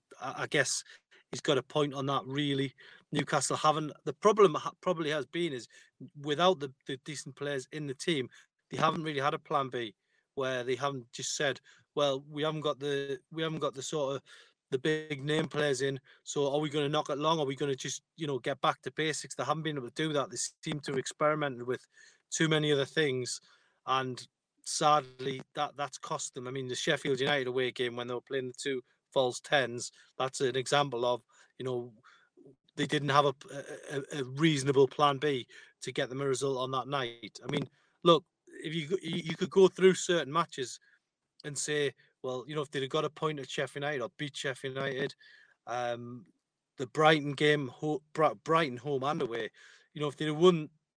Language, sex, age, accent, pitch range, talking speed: English, male, 30-49, British, 135-155 Hz, 205 wpm